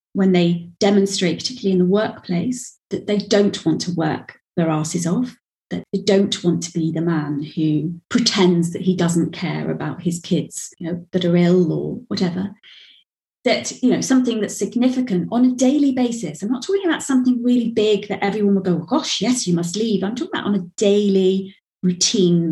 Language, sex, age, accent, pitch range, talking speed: English, female, 30-49, British, 175-240 Hz, 195 wpm